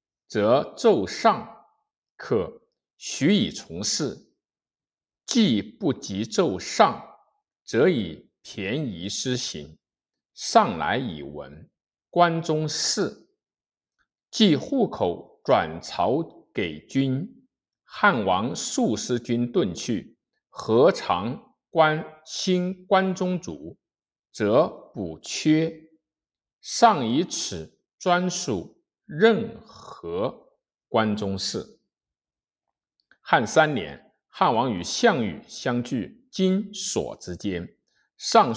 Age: 50-69